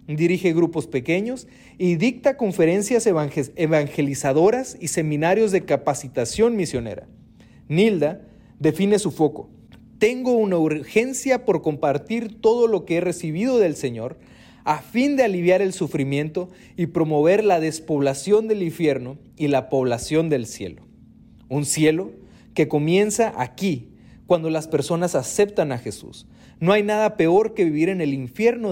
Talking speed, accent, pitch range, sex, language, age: 135 wpm, Mexican, 145-200 Hz, male, Spanish, 40-59